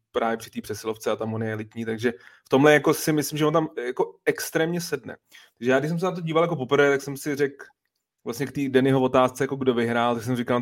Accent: native